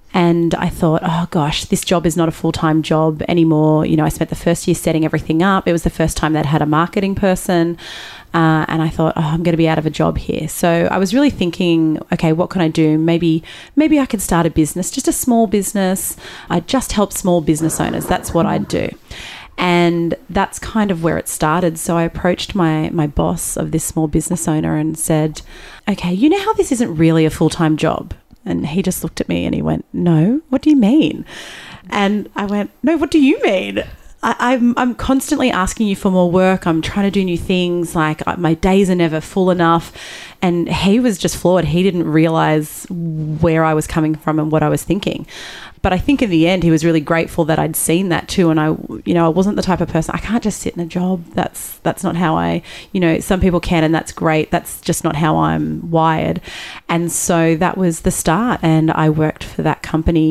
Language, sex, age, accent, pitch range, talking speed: English, female, 30-49, Australian, 160-190 Hz, 235 wpm